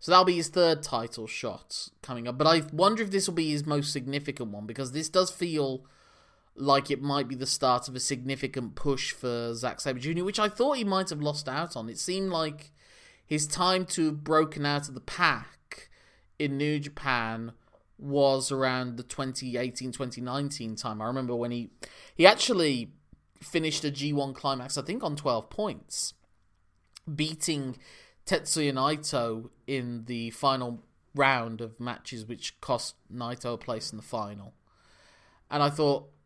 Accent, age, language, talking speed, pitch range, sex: British, 20-39, English, 170 wpm, 120-150 Hz, male